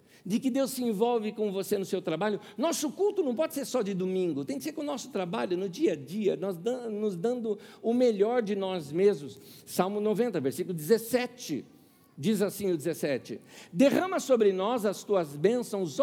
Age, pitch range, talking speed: 60-79, 180-295 Hz, 185 wpm